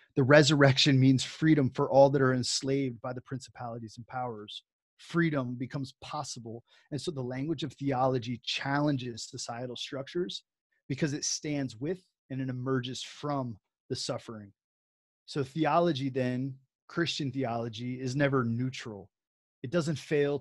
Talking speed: 140 wpm